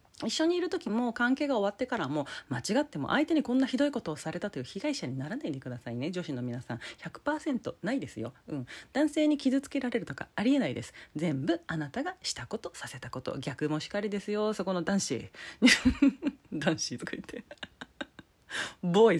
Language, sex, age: Japanese, female, 40-59